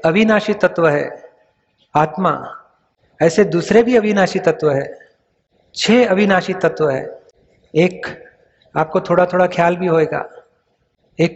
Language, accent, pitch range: Hindi, native, 160-190 Hz